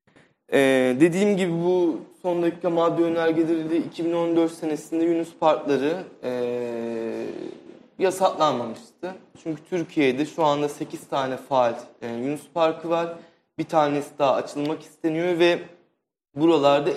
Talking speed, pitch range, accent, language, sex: 110 wpm, 130-165 Hz, native, Turkish, male